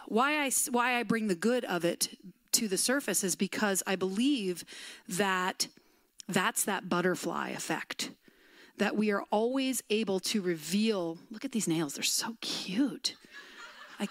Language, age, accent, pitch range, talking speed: English, 30-49, American, 180-250 Hz, 155 wpm